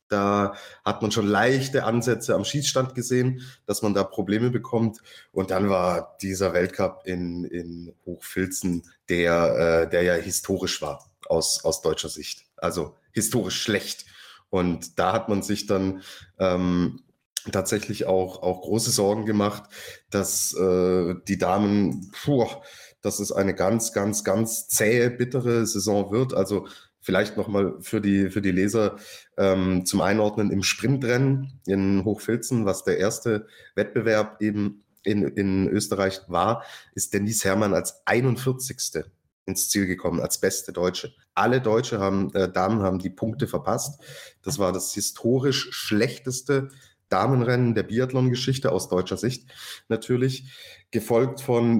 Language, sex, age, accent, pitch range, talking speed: German, male, 20-39, German, 95-120 Hz, 135 wpm